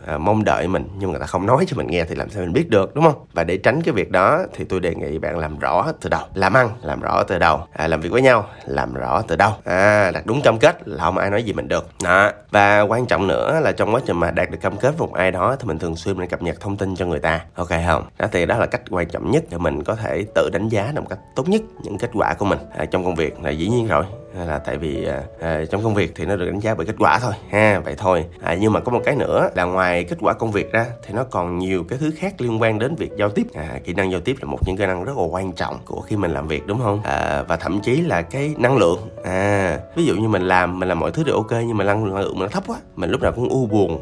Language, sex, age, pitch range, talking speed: Vietnamese, male, 20-39, 85-115 Hz, 310 wpm